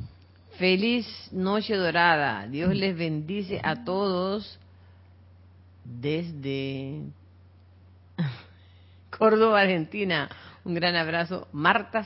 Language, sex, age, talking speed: Spanish, female, 40-59, 75 wpm